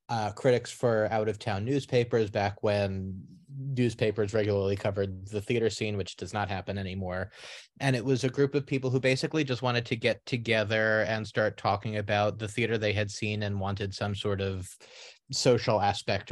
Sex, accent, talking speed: male, American, 175 wpm